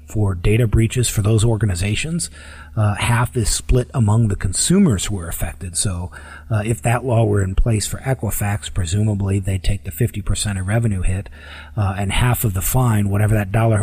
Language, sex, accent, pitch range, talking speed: English, male, American, 90-110 Hz, 185 wpm